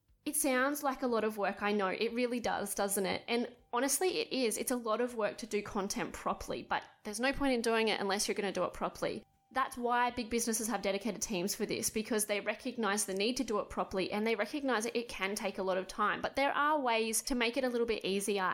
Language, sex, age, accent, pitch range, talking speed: English, female, 20-39, Australian, 205-260 Hz, 260 wpm